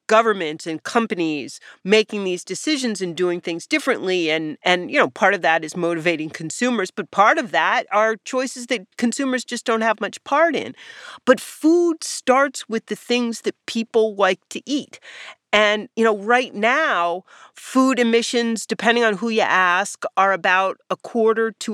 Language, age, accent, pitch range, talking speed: English, 40-59, American, 180-250 Hz, 170 wpm